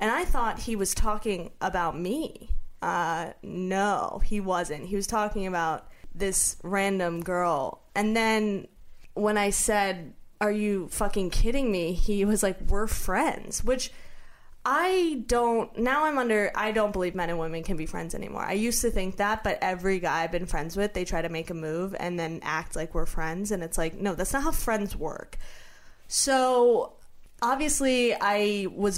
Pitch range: 175-220 Hz